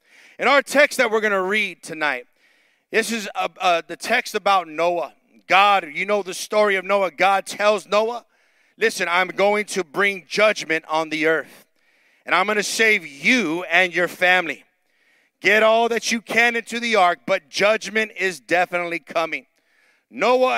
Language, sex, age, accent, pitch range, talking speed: English, male, 40-59, American, 170-215 Hz, 165 wpm